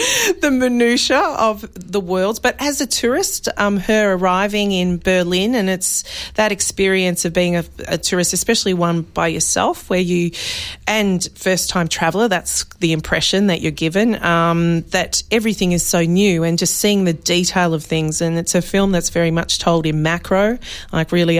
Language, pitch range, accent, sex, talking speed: English, 165-190 Hz, Australian, female, 180 wpm